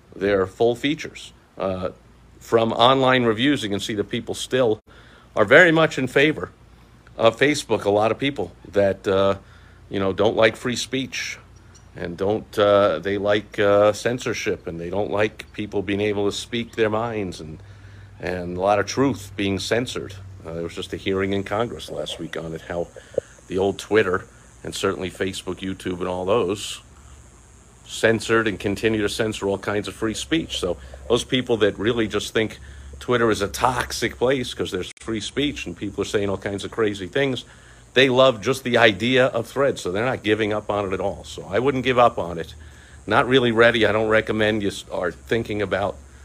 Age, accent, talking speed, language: 50-69, American, 195 wpm, English